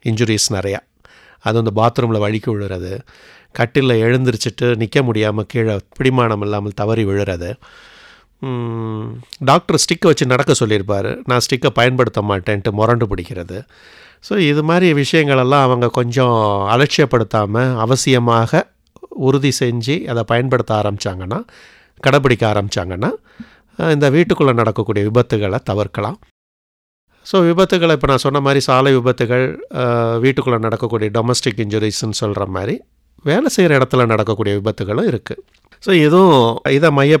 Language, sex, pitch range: English, male, 105-135 Hz